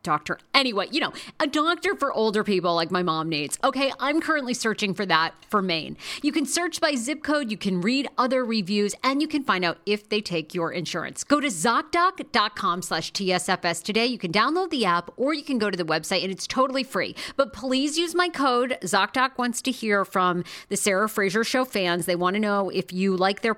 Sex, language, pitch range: female, English, 180-270 Hz